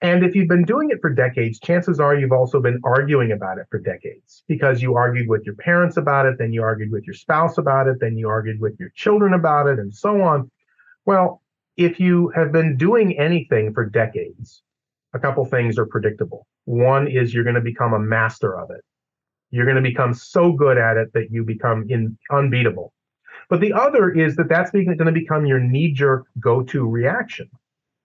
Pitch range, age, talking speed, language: 120-165 Hz, 40-59, 195 wpm, English